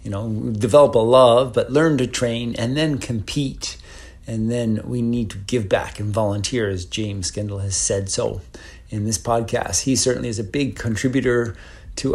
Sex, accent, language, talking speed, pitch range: male, American, English, 185 wpm, 100-135 Hz